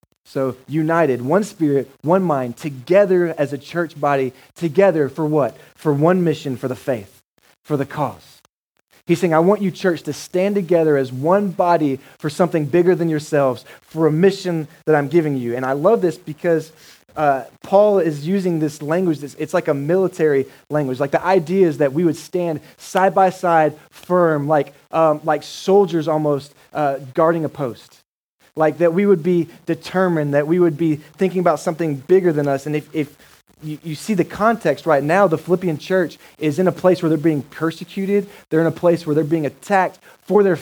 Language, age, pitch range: English, 20-39, 150-185 Hz